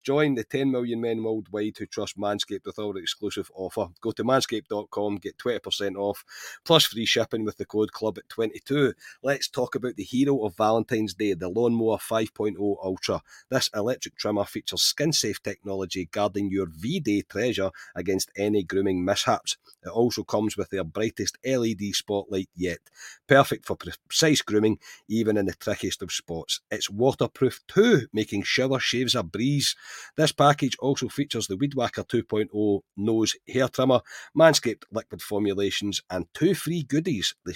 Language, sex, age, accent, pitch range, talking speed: English, male, 30-49, British, 100-125 Hz, 160 wpm